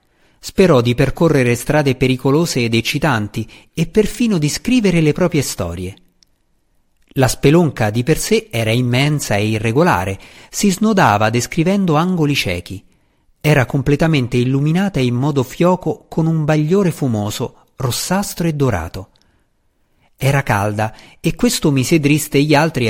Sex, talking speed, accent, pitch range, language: male, 130 wpm, native, 115-160 Hz, Italian